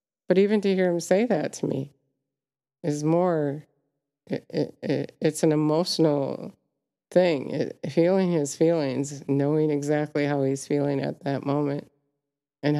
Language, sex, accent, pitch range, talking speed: English, female, American, 145-170 Hz, 125 wpm